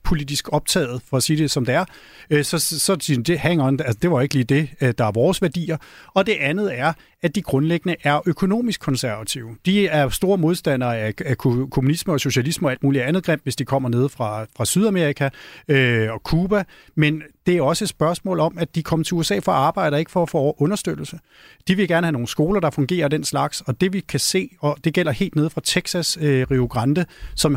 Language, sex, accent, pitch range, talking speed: Danish, male, native, 140-175 Hz, 235 wpm